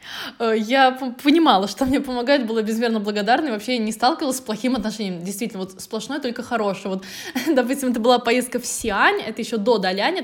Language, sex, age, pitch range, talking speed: Russian, female, 20-39, 220-340 Hz, 190 wpm